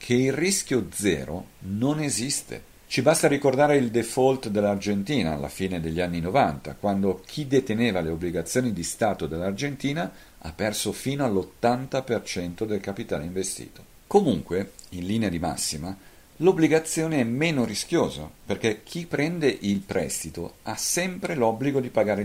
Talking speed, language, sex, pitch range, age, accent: 140 wpm, Italian, male, 90-135 Hz, 50-69, native